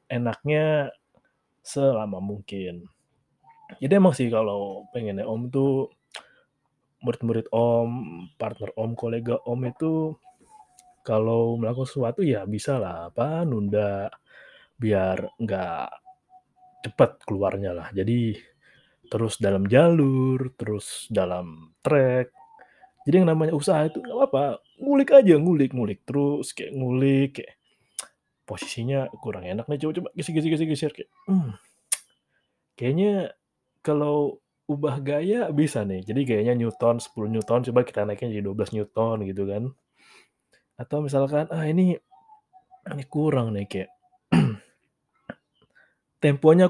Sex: male